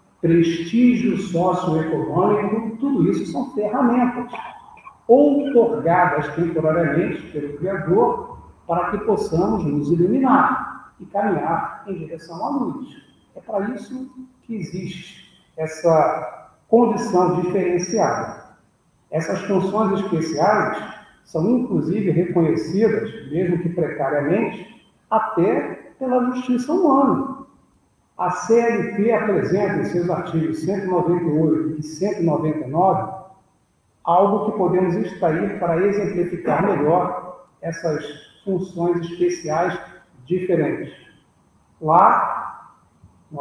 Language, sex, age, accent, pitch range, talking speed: Portuguese, male, 50-69, Brazilian, 165-220 Hz, 90 wpm